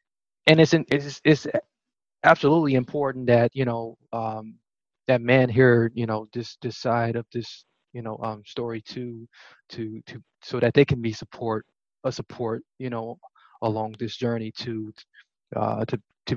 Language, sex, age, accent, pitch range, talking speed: English, male, 20-39, American, 115-150 Hz, 165 wpm